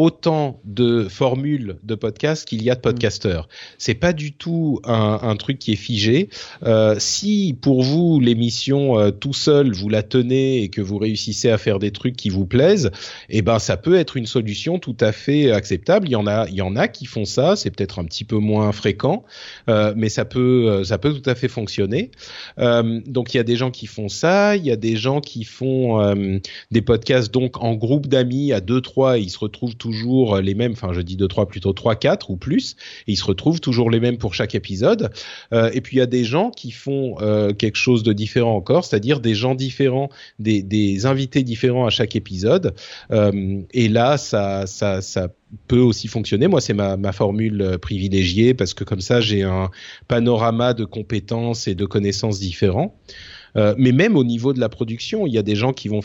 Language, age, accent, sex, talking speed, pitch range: French, 30-49, French, male, 220 wpm, 105-130 Hz